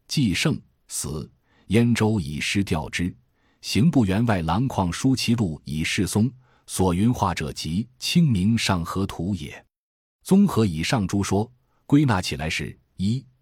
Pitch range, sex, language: 85-115 Hz, male, Chinese